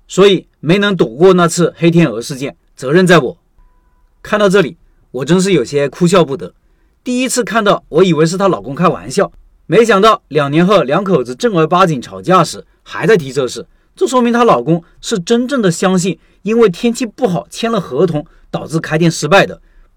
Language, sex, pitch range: Chinese, male, 150-190 Hz